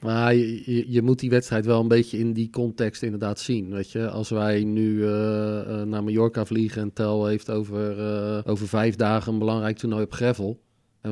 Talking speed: 200 wpm